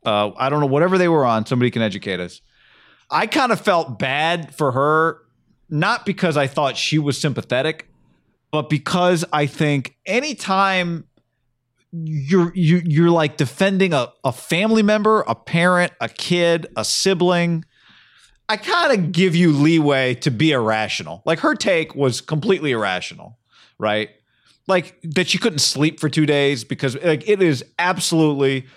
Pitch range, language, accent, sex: 130-175 Hz, English, American, male